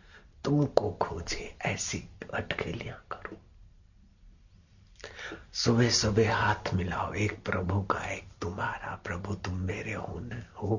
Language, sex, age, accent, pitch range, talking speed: Hindi, male, 60-79, native, 90-105 Hz, 110 wpm